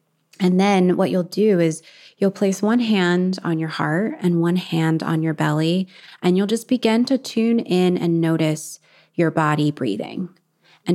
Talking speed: 175 wpm